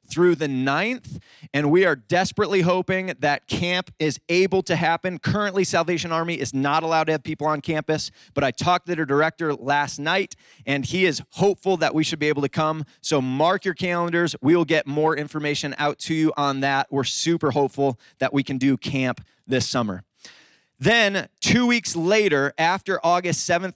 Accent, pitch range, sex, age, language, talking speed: American, 140-180 Hz, male, 30-49, English, 190 wpm